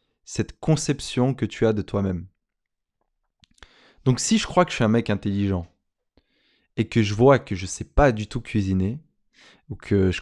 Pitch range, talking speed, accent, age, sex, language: 105-145 Hz, 190 wpm, French, 20-39, male, French